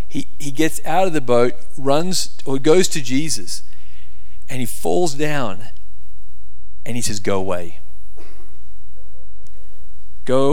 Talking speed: 120 wpm